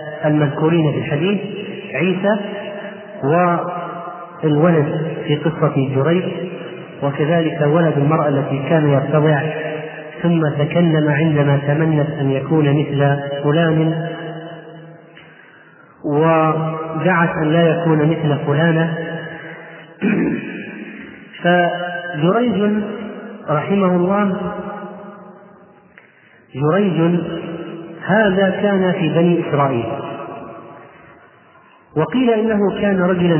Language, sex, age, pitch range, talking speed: Arabic, male, 30-49, 150-185 Hz, 75 wpm